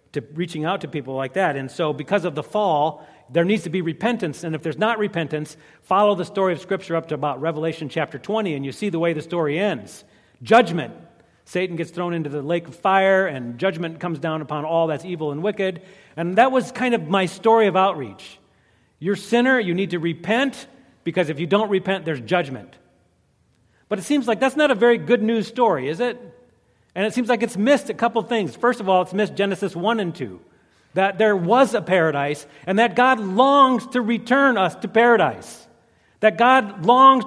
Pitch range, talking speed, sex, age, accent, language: 165-230 Hz, 210 wpm, male, 40-59, American, English